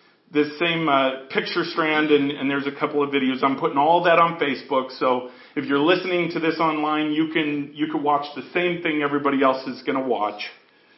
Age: 40-59